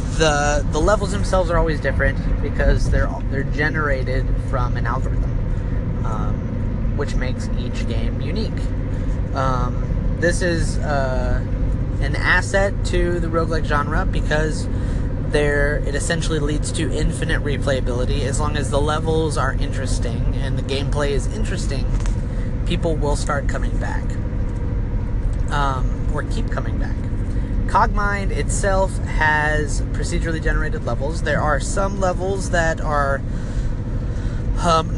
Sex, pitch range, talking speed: male, 105-130 Hz, 125 wpm